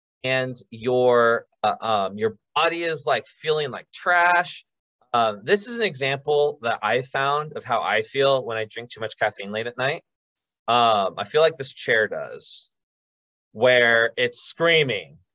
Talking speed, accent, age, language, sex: 165 wpm, American, 20-39, English, male